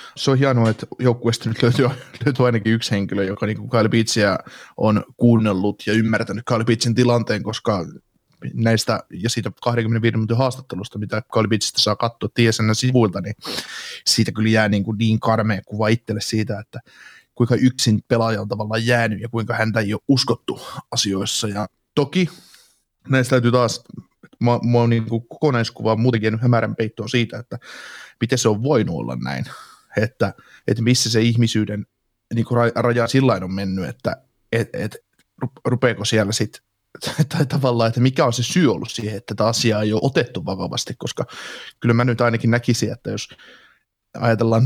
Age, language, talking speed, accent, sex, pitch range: 20-39, Finnish, 150 wpm, native, male, 105-120 Hz